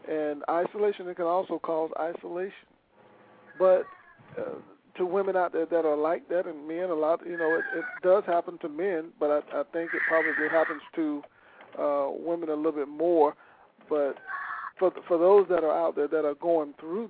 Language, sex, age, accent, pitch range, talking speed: English, male, 50-69, American, 155-190 Hz, 195 wpm